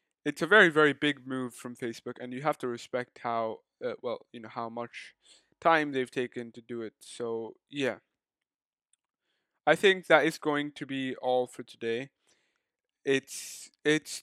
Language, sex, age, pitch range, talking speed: English, male, 20-39, 125-150 Hz, 170 wpm